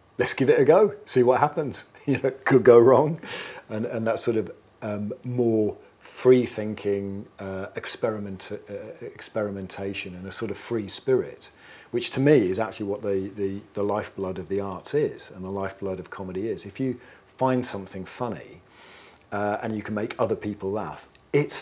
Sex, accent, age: male, British, 40-59